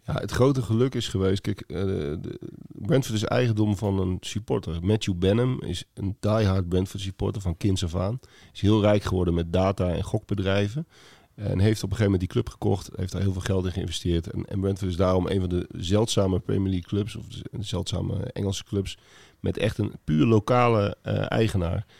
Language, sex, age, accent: Dutch, male, 40-59, Dutch